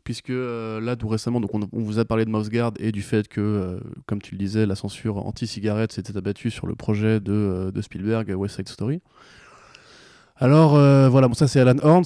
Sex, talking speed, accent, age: male, 225 wpm, French, 20-39